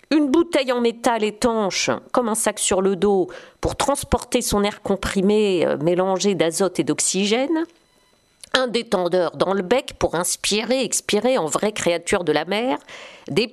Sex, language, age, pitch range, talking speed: female, French, 50-69, 190-270 Hz, 155 wpm